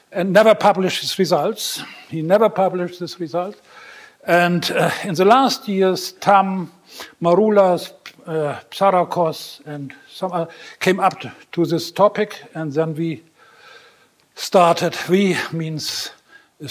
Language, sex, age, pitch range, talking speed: English, male, 60-79, 160-200 Hz, 125 wpm